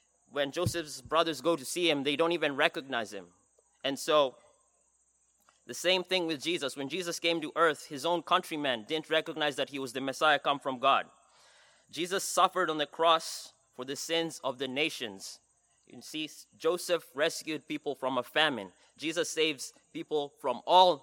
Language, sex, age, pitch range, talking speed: English, male, 20-39, 135-165 Hz, 175 wpm